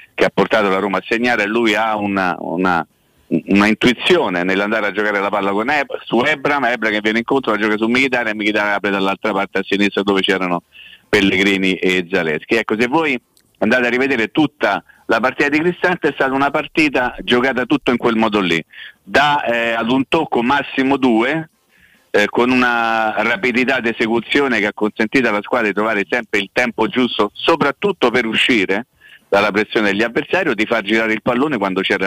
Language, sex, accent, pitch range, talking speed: Italian, male, native, 95-115 Hz, 195 wpm